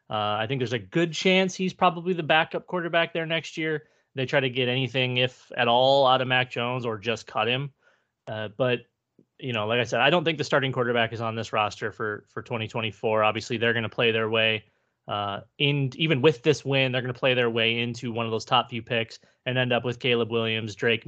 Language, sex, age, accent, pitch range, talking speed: English, male, 20-39, American, 115-140 Hz, 240 wpm